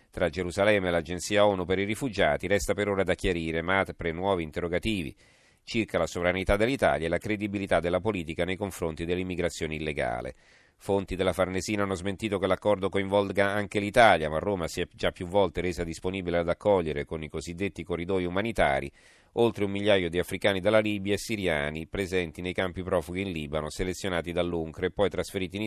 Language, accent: Italian, native